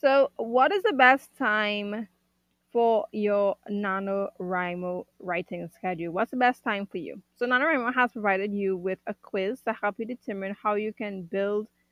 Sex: female